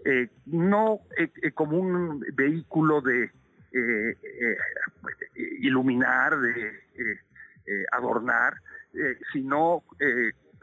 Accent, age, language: Mexican, 50-69, Spanish